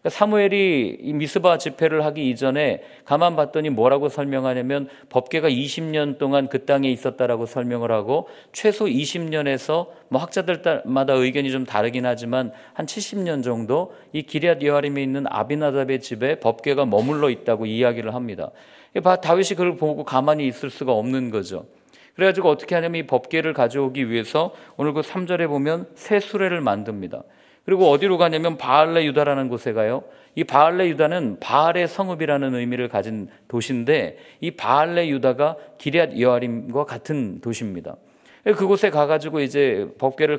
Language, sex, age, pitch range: Korean, male, 40-59, 130-175 Hz